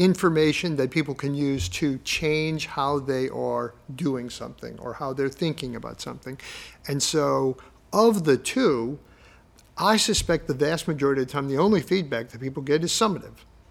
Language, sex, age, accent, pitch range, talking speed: English, male, 50-69, American, 140-185 Hz, 170 wpm